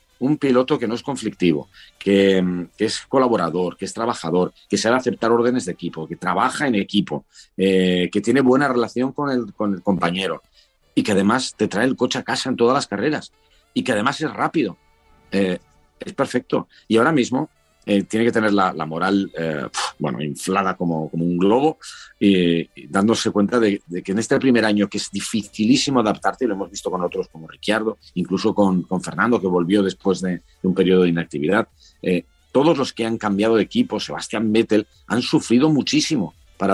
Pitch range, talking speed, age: 90-115 Hz, 195 wpm, 40-59